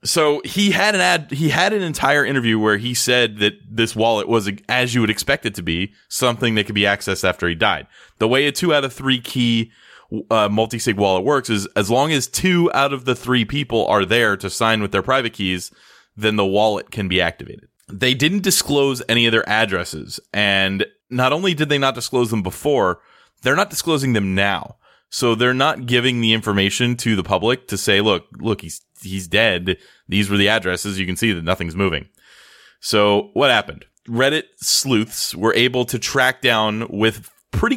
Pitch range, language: 100-125 Hz, English